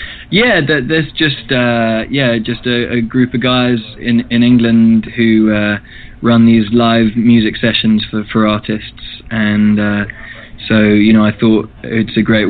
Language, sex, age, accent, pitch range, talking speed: English, male, 20-39, British, 110-115 Hz, 165 wpm